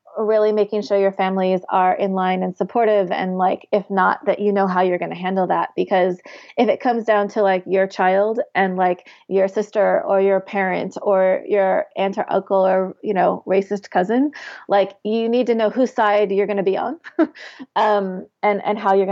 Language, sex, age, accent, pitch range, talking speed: English, female, 30-49, American, 190-225 Hz, 205 wpm